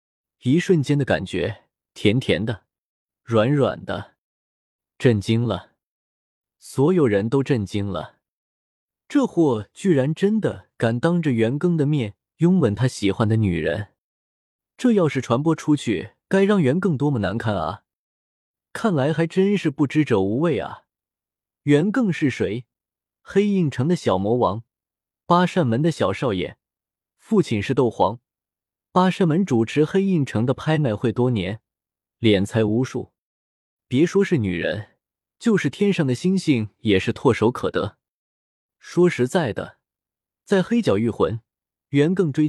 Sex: male